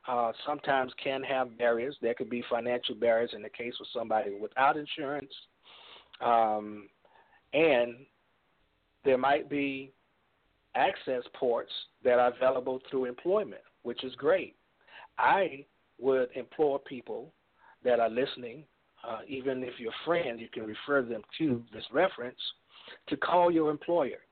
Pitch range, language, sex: 115-140 Hz, English, male